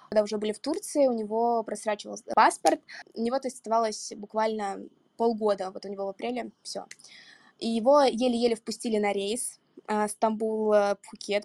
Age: 20-39